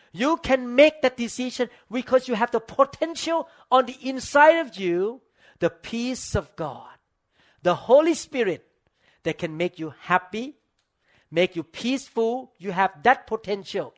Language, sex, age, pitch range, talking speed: English, male, 50-69, 160-235 Hz, 145 wpm